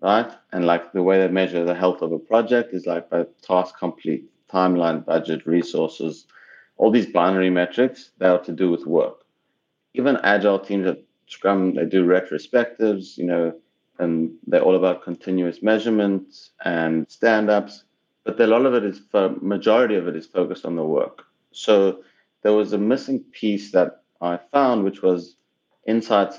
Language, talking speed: English, 170 wpm